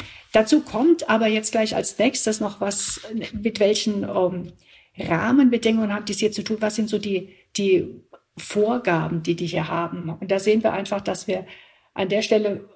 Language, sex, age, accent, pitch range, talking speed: German, female, 50-69, German, 190-220 Hz, 180 wpm